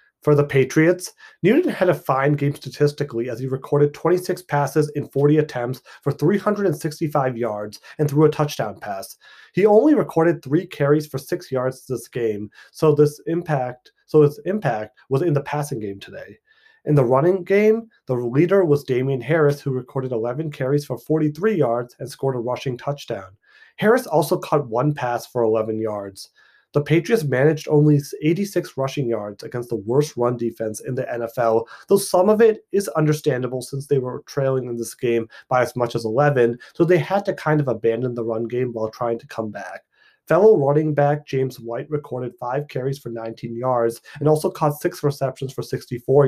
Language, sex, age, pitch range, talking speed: English, male, 30-49, 120-155 Hz, 180 wpm